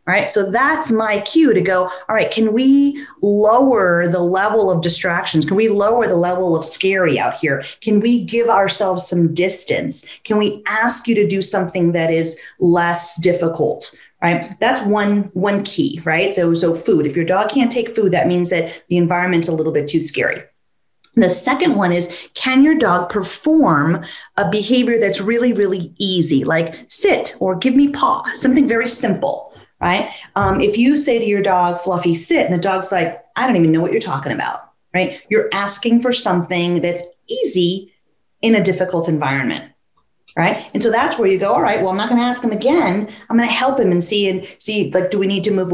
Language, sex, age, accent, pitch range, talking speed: English, female, 30-49, American, 175-225 Hz, 205 wpm